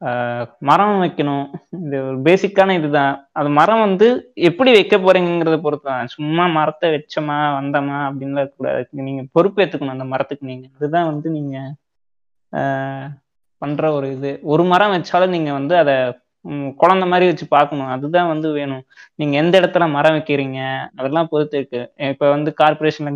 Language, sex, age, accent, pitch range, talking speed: Tamil, male, 20-39, native, 140-170 Hz, 145 wpm